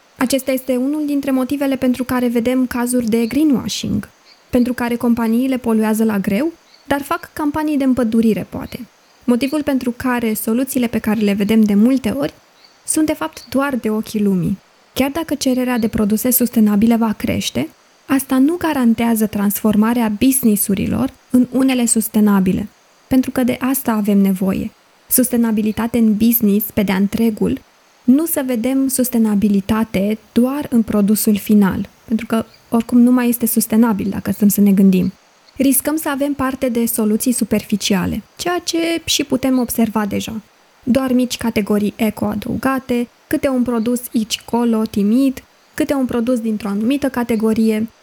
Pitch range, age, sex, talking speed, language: 215-260 Hz, 20-39, female, 145 wpm, Romanian